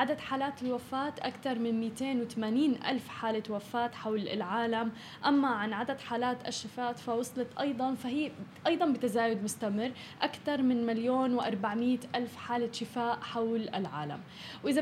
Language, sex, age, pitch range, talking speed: Arabic, female, 10-29, 230-275 Hz, 130 wpm